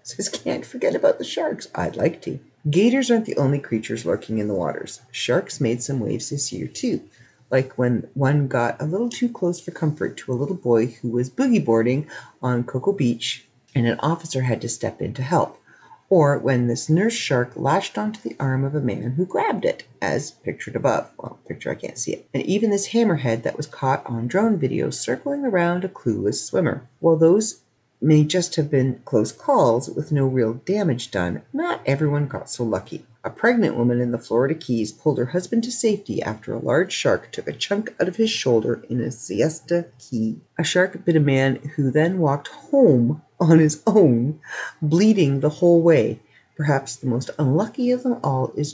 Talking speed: 200 wpm